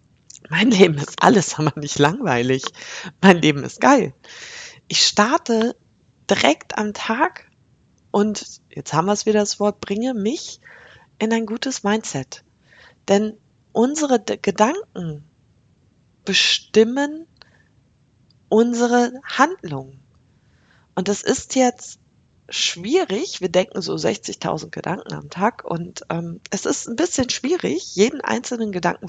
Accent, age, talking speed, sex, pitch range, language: German, 20-39, 120 wpm, female, 155-250 Hz, German